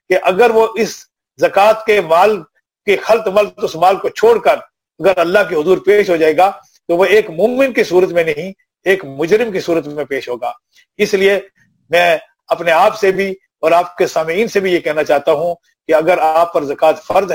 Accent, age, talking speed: Indian, 50-69, 185 wpm